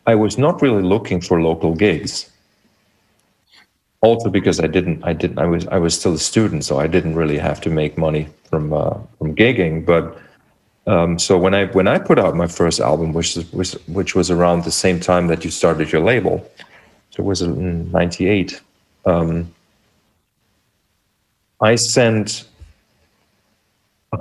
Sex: male